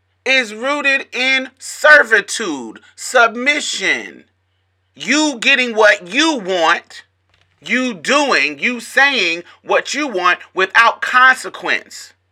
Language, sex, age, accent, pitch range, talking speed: English, male, 30-49, American, 180-260 Hz, 95 wpm